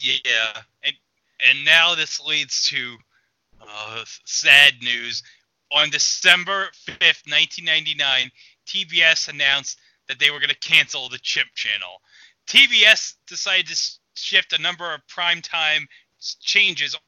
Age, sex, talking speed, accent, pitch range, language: 30-49, male, 120 wpm, American, 130-170 Hz, English